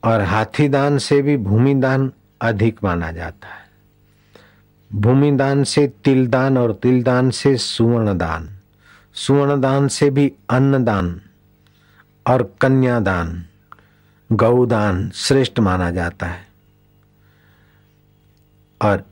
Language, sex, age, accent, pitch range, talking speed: Hindi, male, 60-79, native, 100-130 Hz, 120 wpm